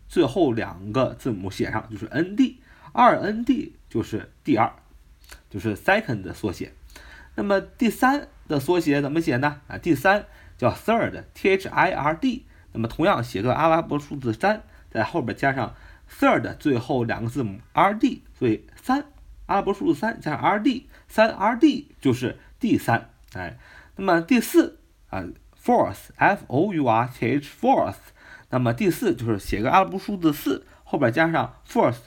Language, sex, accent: Chinese, male, native